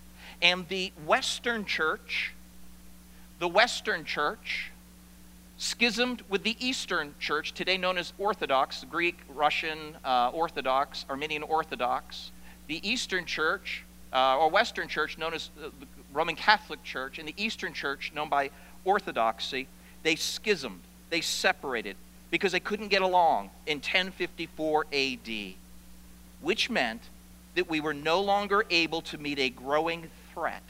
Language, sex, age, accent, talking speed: English, male, 50-69, American, 130 wpm